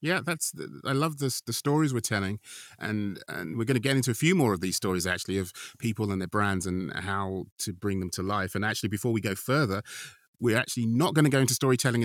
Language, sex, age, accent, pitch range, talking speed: English, male, 30-49, British, 105-130 Hz, 245 wpm